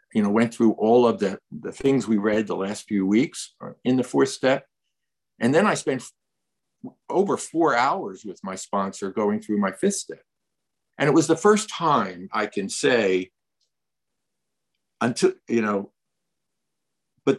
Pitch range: 100-130 Hz